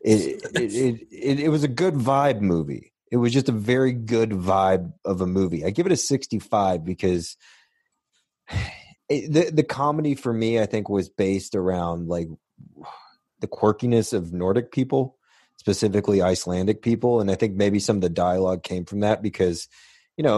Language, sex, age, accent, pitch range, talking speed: English, male, 30-49, American, 95-120 Hz, 175 wpm